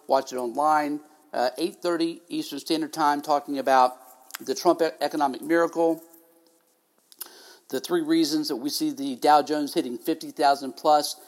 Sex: male